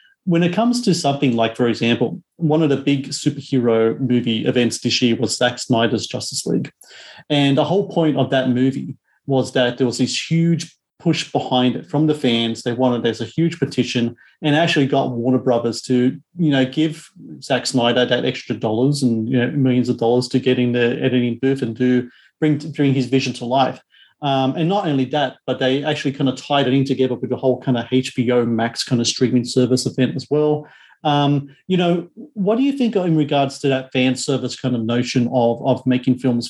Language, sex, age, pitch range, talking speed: English, male, 30-49, 125-145 Hz, 215 wpm